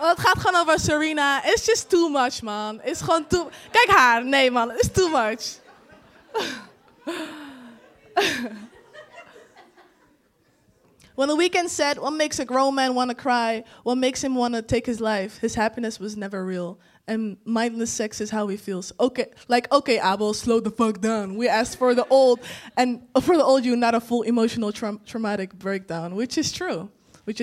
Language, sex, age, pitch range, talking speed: Dutch, female, 20-39, 235-335 Hz, 165 wpm